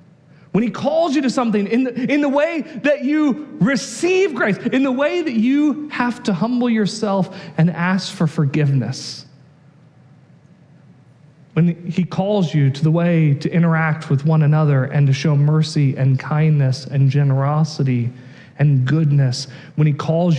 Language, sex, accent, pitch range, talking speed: English, male, American, 140-165 Hz, 155 wpm